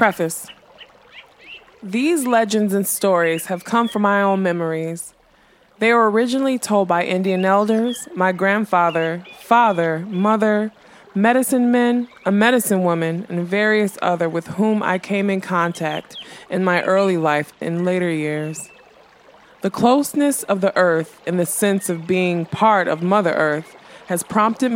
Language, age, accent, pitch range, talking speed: English, 20-39, American, 175-230 Hz, 145 wpm